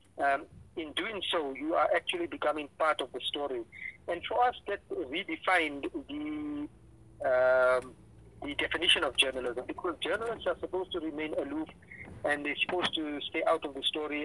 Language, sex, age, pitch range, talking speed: English, male, 50-69, 140-190 Hz, 165 wpm